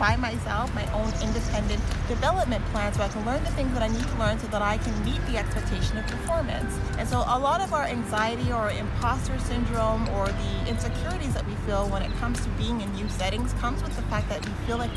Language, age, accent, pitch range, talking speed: English, 30-49, American, 95-110 Hz, 235 wpm